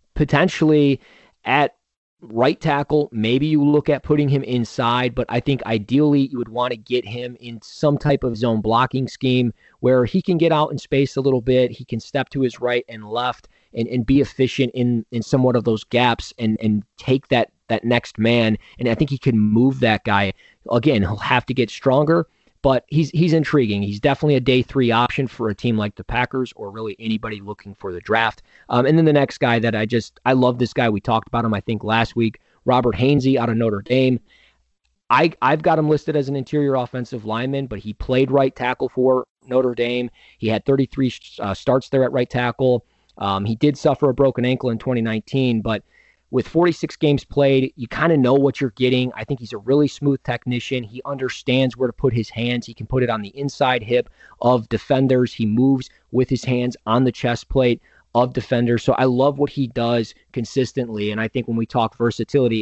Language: English